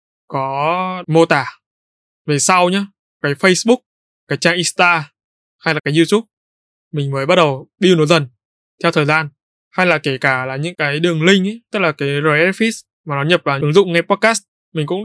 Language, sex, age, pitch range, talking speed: Vietnamese, male, 20-39, 145-180 Hz, 195 wpm